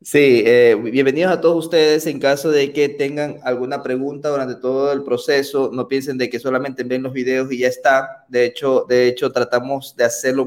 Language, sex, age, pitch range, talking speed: Spanish, male, 20-39, 125-150 Hz, 200 wpm